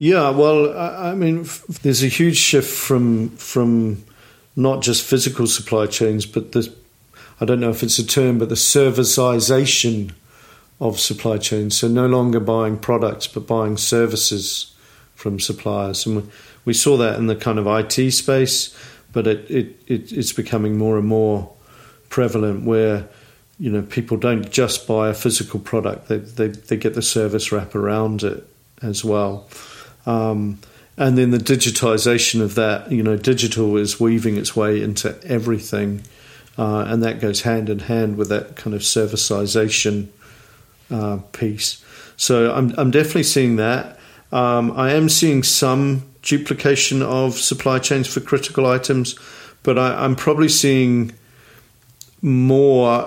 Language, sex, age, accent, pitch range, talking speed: English, male, 50-69, British, 110-130 Hz, 150 wpm